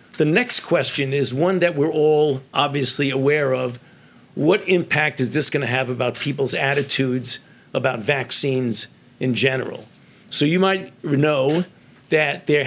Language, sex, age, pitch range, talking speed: English, male, 50-69, 135-155 Hz, 145 wpm